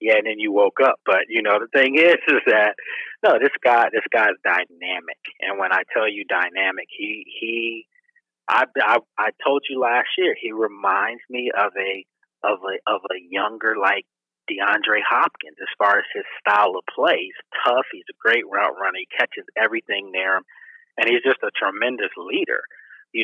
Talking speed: 190 wpm